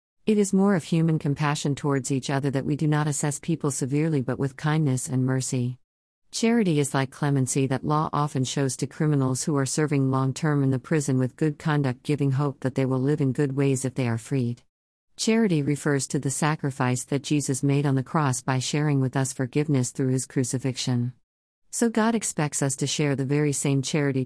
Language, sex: English, female